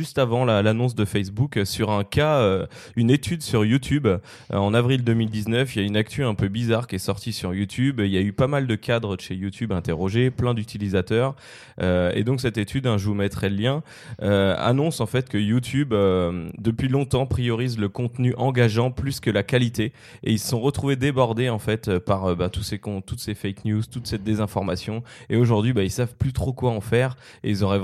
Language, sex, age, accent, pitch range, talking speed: French, male, 20-39, French, 100-125 Hz, 230 wpm